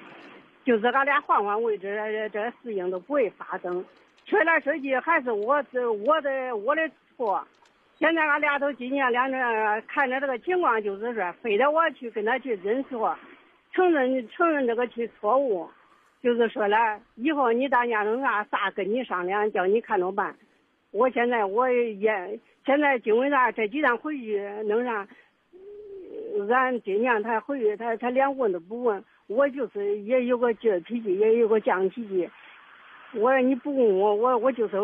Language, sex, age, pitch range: Chinese, female, 50-69, 210-275 Hz